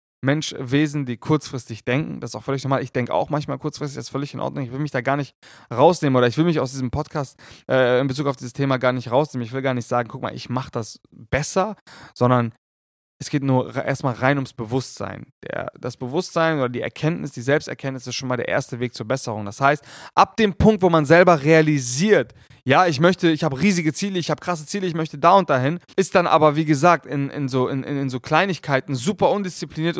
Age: 20-39